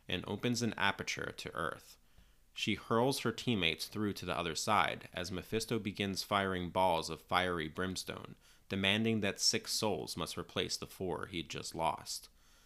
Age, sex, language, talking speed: 30-49, male, English, 160 wpm